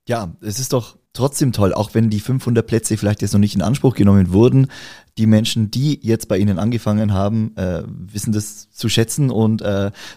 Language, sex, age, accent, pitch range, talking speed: German, male, 30-49, German, 100-125 Hz, 200 wpm